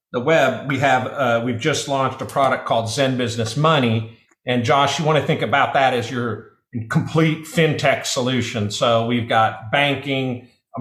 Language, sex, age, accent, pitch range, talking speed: English, male, 50-69, American, 115-145 Hz, 180 wpm